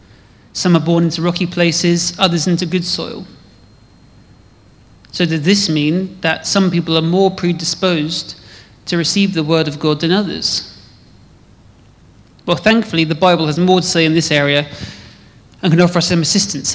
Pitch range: 150-175 Hz